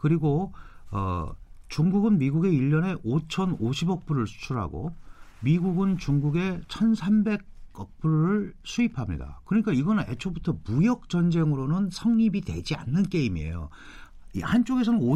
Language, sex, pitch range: Korean, male, 125-190 Hz